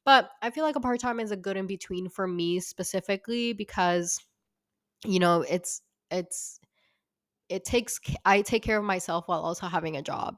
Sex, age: female, 10-29